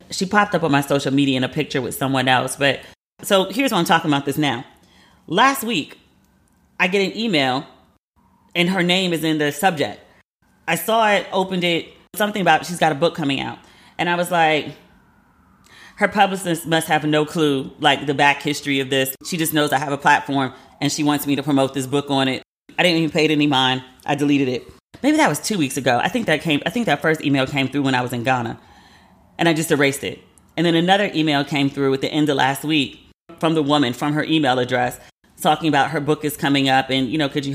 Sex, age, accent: female, 30-49, American